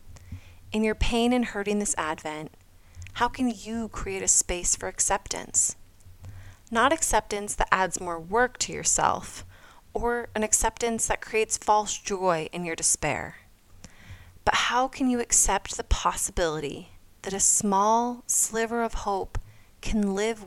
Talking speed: 140 wpm